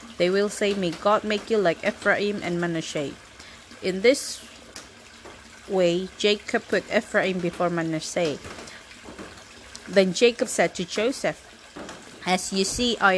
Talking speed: 125 wpm